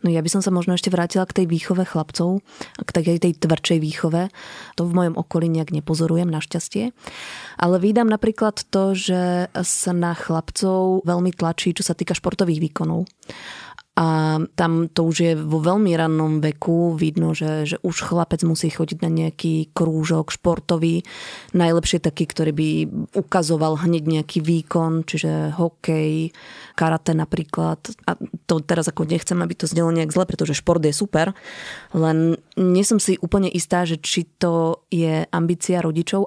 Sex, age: female, 20-39